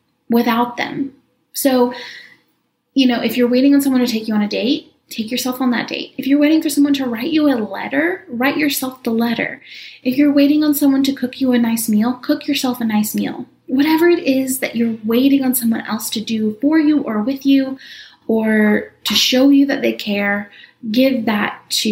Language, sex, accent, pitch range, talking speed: English, female, American, 220-280 Hz, 210 wpm